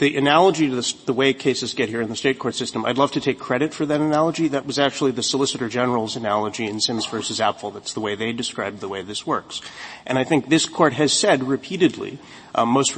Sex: male